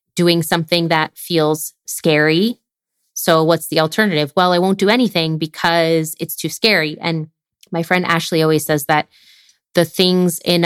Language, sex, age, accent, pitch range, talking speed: English, female, 20-39, American, 160-190 Hz, 160 wpm